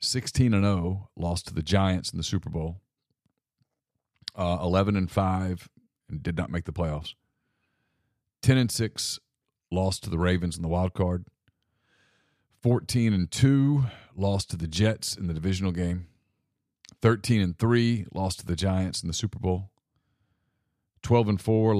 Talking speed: 125 wpm